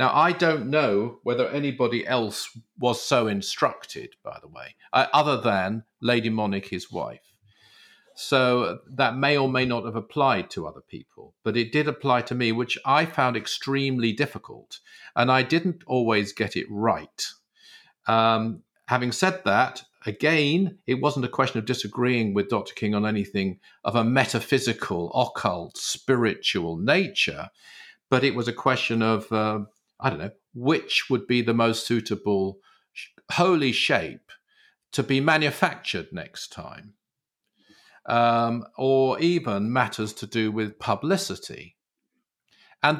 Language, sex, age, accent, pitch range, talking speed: English, male, 50-69, British, 110-145 Hz, 145 wpm